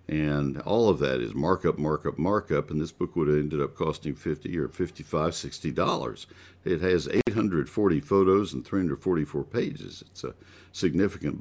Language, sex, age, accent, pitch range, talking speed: English, male, 60-79, American, 75-100 Hz, 160 wpm